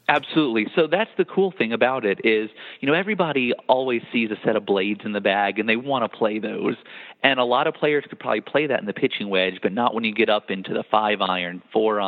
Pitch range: 105-125 Hz